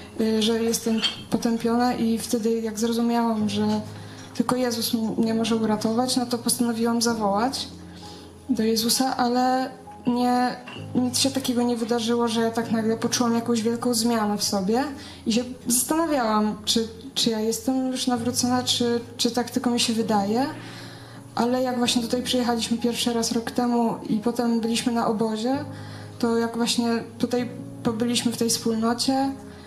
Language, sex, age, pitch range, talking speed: Polish, female, 20-39, 230-245 Hz, 150 wpm